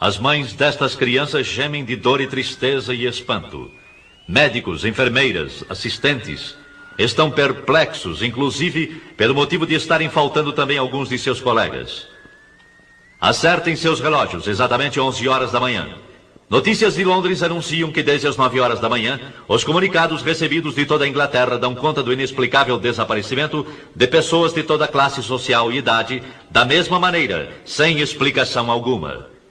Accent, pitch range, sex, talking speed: Brazilian, 130-160 Hz, male, 150 wpm